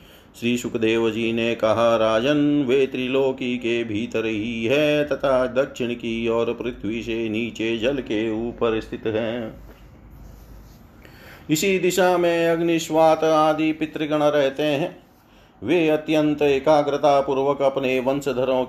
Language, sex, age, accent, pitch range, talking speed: Hindi, male, 40-59, native, 120-150 Hz, 120 wpm